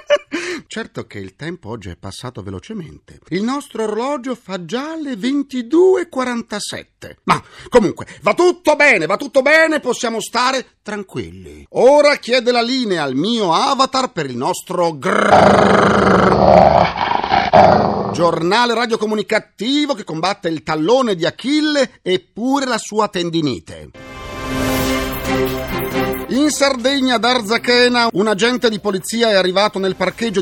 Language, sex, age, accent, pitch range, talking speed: Italian, male, 50-69, native, 160-265 Hz, 120 wpm